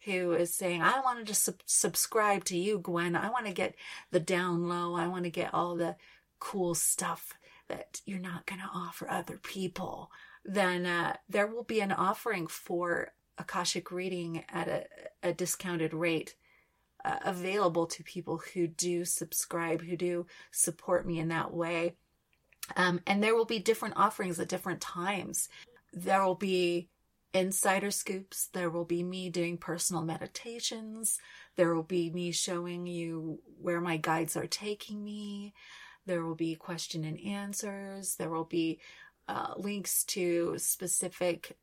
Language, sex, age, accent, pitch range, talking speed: English, female, 30-49, American, 170-205 Hz, 155 wpm